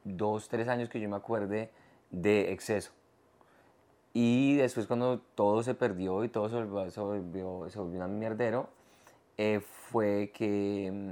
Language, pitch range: Spanish, 105-120 Hz